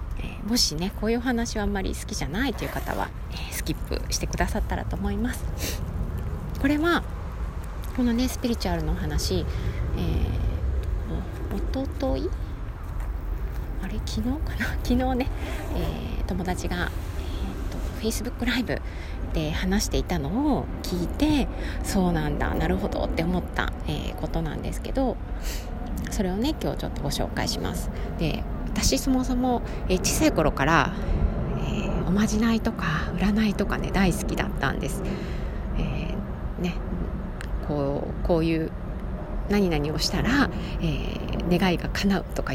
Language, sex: Japanese, female